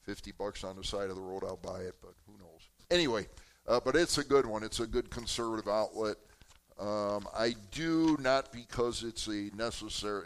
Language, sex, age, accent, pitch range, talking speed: English, male, 50-69, American, 95-120 Hz, 200 wpm